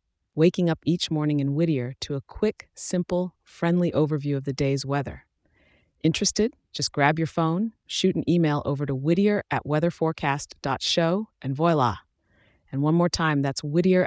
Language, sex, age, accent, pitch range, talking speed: English, female, 30-49, American, 140-170 Hz, 160 wpm